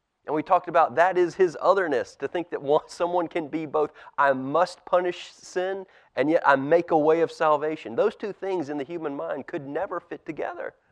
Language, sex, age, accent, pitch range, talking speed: English, male, 30-49, American, 160-210 Hz, 215 wpm